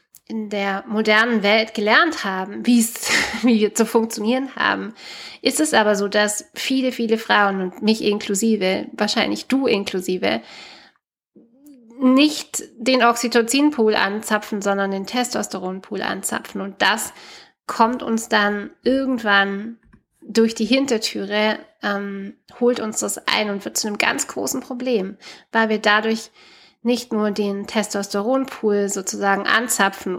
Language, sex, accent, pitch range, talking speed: German, female, German, 205-240 Hz, 125 wpm